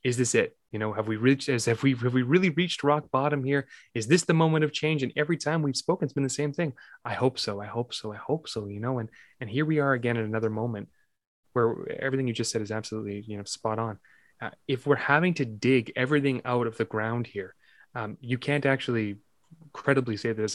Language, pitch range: English, 115-150 Hz